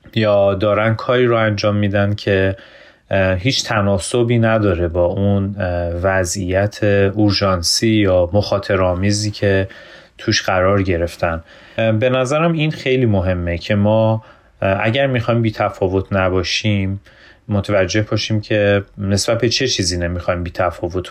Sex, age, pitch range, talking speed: male, 30-49, 95-115 Hz, 120 wpm